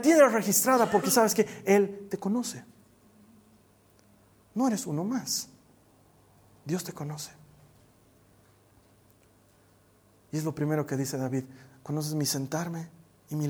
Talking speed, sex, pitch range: 120 wpm, male, 130-180 Hz